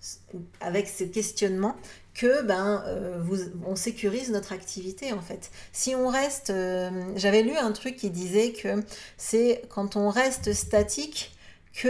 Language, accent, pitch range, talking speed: French, French, 175-220 Hz, 150 wpm